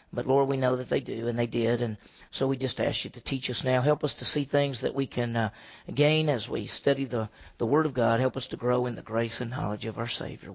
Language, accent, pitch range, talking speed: English, American, 135-175 Hz, 285 wpm